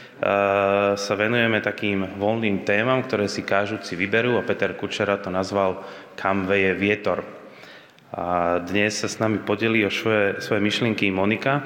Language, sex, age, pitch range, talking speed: Slovak, male, 20-39, 95-110 Hz, 145 wpm